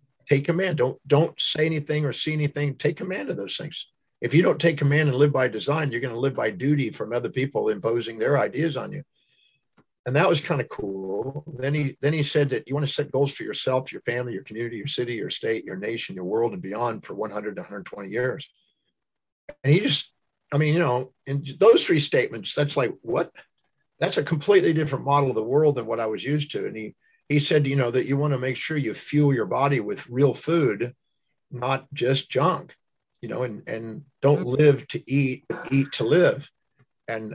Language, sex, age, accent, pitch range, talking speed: English, male, 50-69, American, 130-155 Hz, 220 wpm